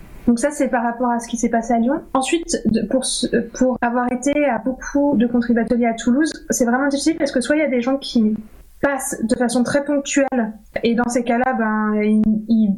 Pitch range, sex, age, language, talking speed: 225-265 Hz, female, 20-39, French, 215 wpm